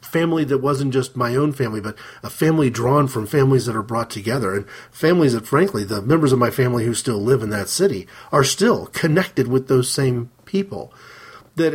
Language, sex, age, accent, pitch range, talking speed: English, male, 40-59, American, 120-150 Hz, 205 wpm